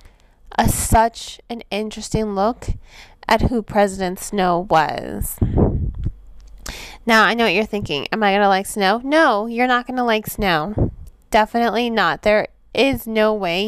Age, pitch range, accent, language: 20-39, 190-230 Hz, American, English